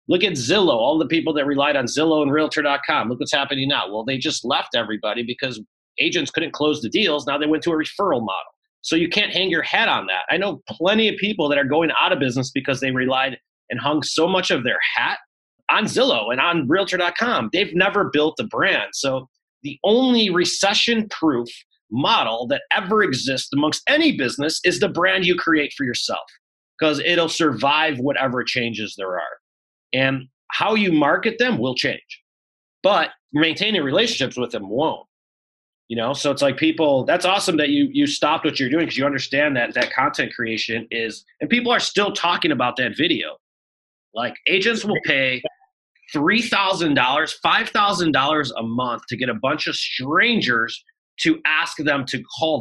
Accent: American